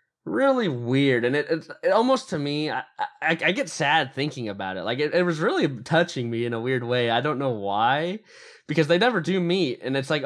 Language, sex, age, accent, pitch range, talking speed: English, male, 20-39, American, 105-140 Hz, 235 wpm